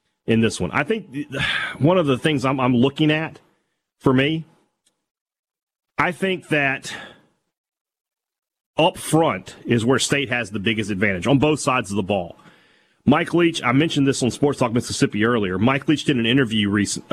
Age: 30-49